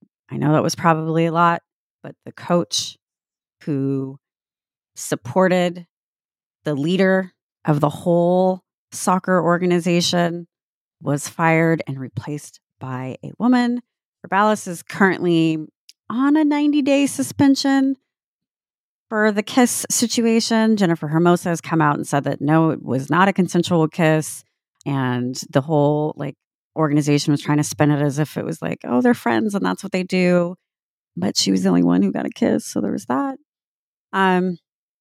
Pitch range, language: 145-185 Hz, English